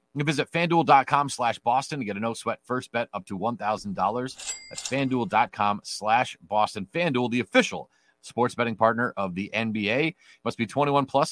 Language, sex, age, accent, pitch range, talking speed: English, male, 30-49, American, 105-135 Hz, 160 wpm